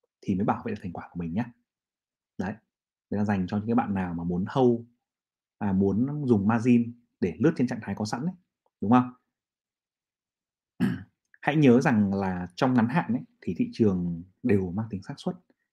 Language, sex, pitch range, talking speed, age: Vietnamese, male, 120-160 Hz, 200 wpm, 30-49